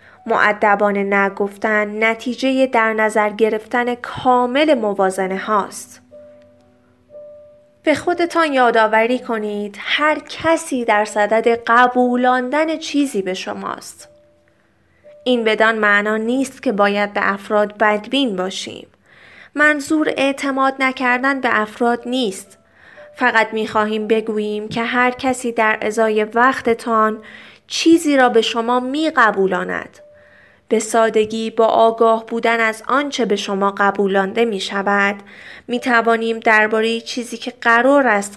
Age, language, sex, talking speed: 20-39, Persian, female, 110 wpm